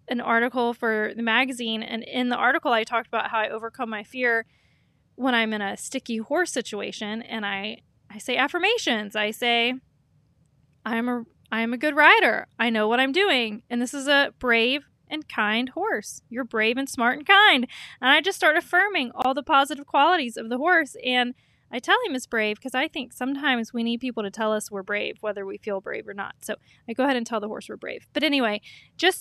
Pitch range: 225-280 Hz